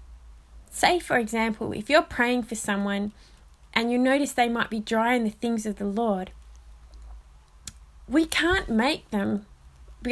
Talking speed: 155 wpm